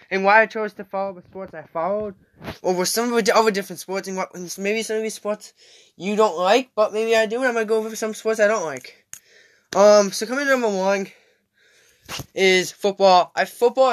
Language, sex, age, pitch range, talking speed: English, male, 10-29, 185-220 Hz, 225 wpm